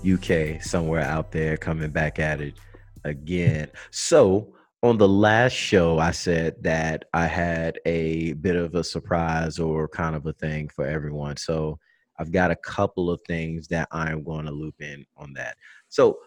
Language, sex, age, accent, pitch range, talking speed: English, male, 30-49, American, 85-110 Hz, 175 wpm